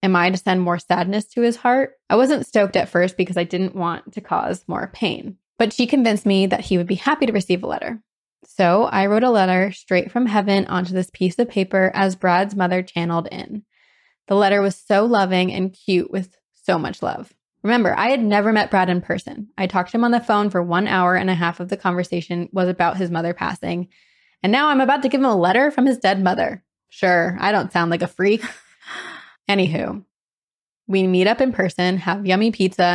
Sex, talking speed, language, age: female, 220 wpm, English, 20-39